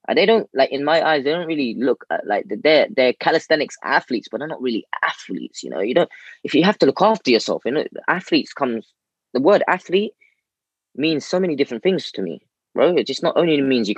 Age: 20-39